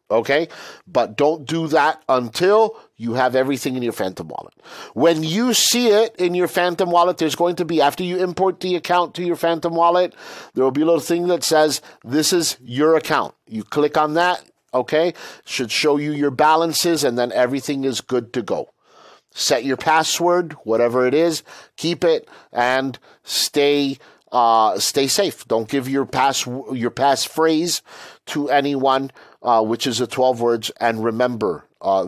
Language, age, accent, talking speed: English, 50-69, American, 170 wpm